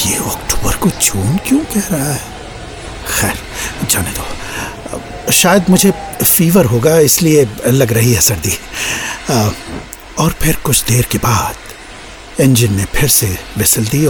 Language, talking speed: Hindi, 135 wpm